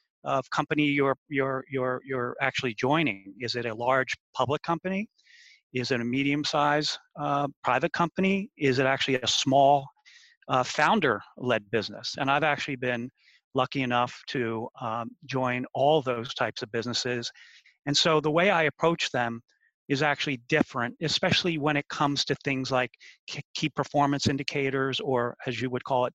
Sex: male